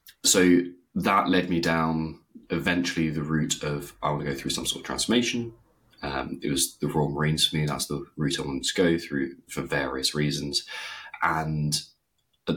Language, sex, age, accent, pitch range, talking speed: English, male, 20-39, British, 70-85 Hz, 185 wpm